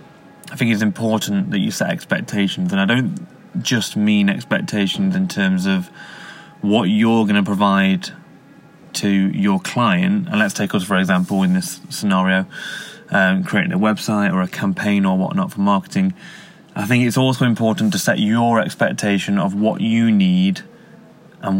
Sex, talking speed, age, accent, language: male, 165 wpm, 20-39, British, English